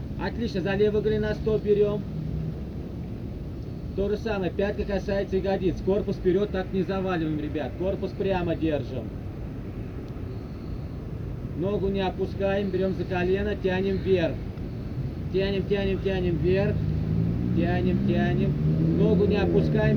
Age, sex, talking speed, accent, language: 30-49, male, 110 wpm, native, Russian